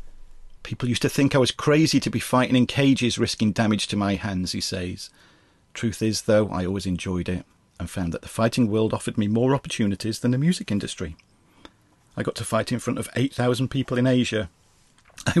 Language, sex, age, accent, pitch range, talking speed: English, male, 40-59, British, 100-125 Hz, 205 wpm